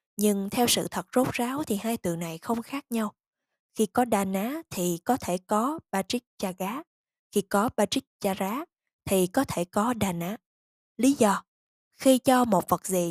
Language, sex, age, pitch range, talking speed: Vietnamese, female, 10-29, 185-250 Hz, 185 wpm